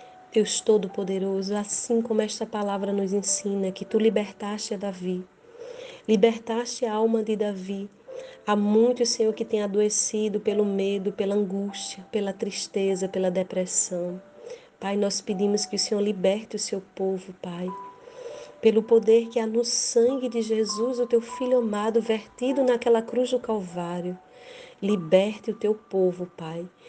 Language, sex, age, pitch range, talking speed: Portuguese, female, 30-49, 205-255 Hz, 145 wpm